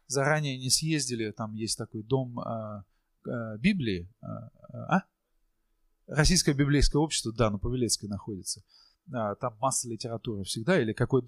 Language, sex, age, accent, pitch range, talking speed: Russian, male, 20-39, native, 120-170 Hz, 110 wpm